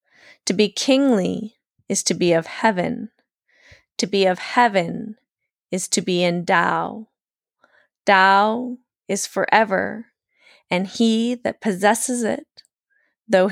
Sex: female